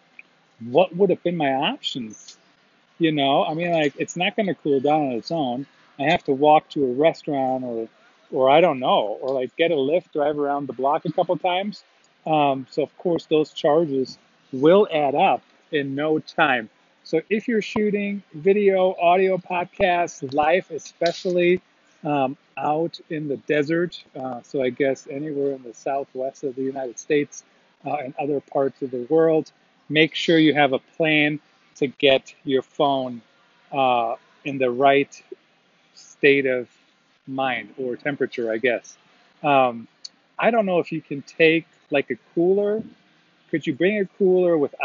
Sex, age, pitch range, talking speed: male, 40-59, 140-175 Hz, 170 wpm